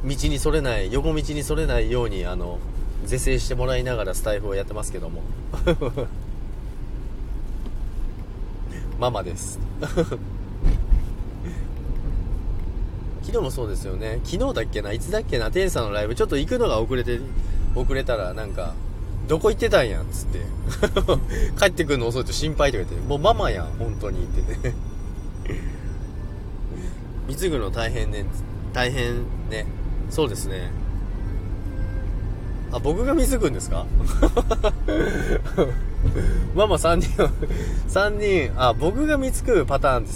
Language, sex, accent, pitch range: Japanese, male, native, 95-130 Hz